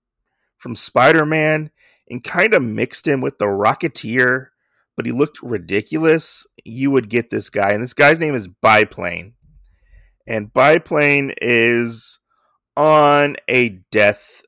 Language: English